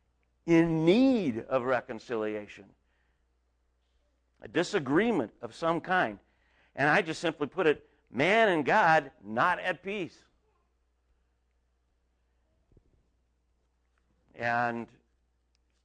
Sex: male